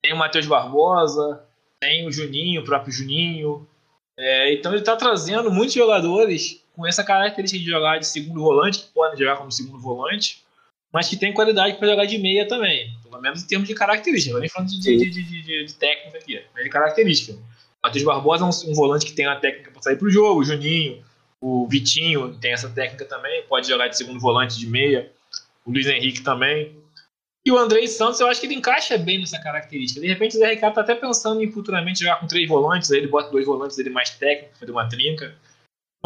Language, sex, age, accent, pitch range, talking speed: Portuguese, male, 20-39, Brazilian, 140-210 Hz, 220 wpm